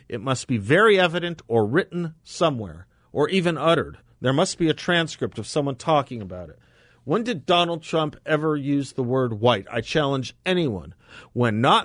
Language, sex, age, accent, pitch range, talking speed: English, male, 50-69, American, 105-145 Hz, 175 wpm